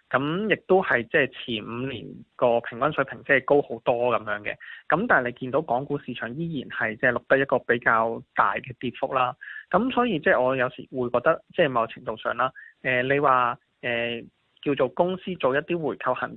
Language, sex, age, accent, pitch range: Chinese, male, 20-39, native, 120-145 Hz